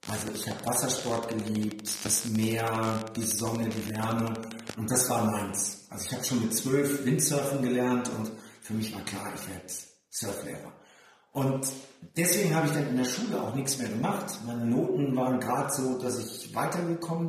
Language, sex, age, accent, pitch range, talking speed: German, male, 40-59, German, 115-140 Hz, 175 wpm